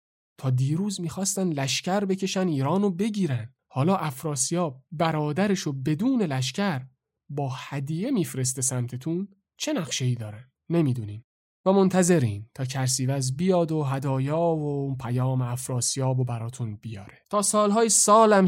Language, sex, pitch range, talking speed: Persian, male, 125-150 Hz, 115 wpm